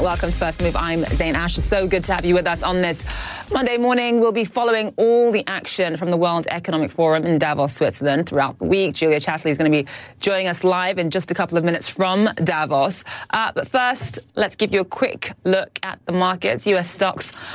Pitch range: 150-190 Hz